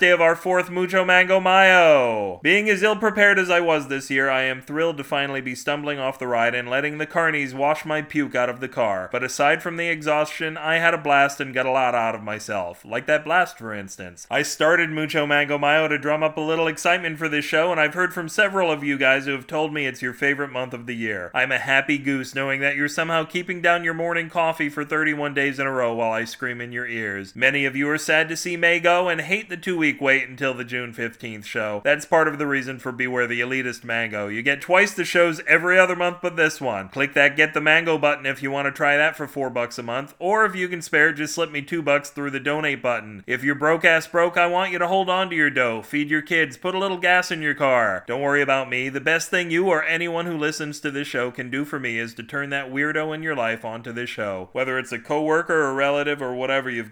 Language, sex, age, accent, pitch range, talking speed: English, male, 30-49, American, 130-165 Hz, 265 wpm